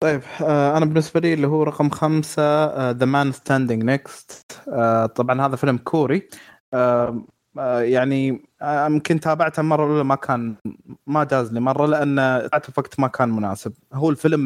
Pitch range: 120-145 Hz